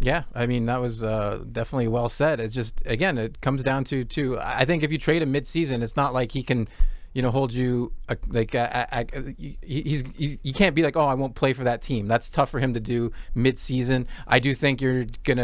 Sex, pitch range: male, 120-145 Hz